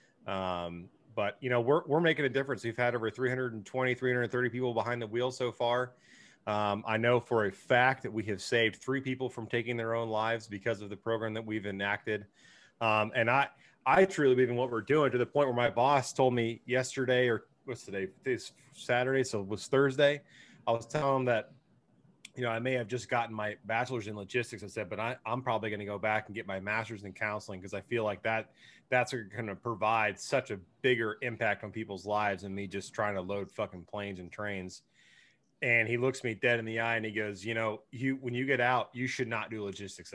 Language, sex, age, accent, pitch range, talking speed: English, male, 30-49, American, 105-125 Hz, 230 wpm